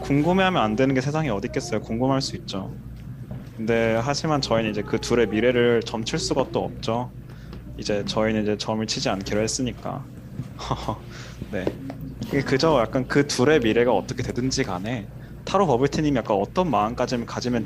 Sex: male